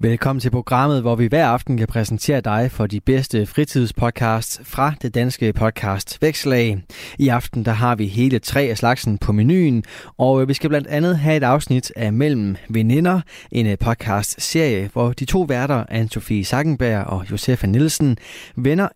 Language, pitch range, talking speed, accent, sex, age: Danish, 110-140 Hz, 170 wpm, native, male, 20-39